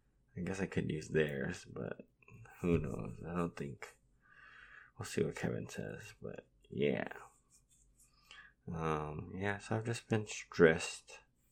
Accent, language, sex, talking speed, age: American, English, male, 135 wpm, 20-39